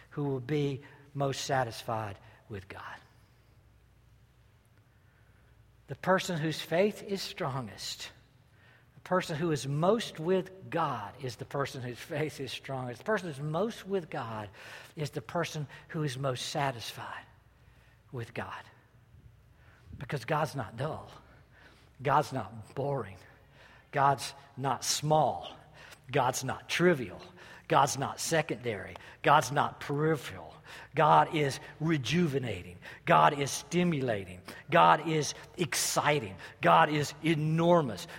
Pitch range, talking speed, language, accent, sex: 120-150 Hz, 115 wpm, English, American, male